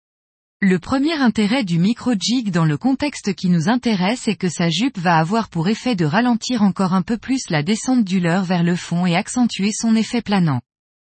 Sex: female